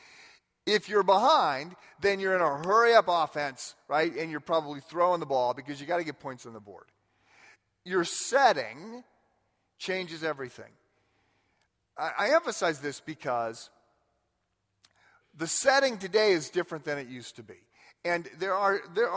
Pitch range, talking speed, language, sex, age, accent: 125-180 Hz, 145 wpm, English, male, 40-59, American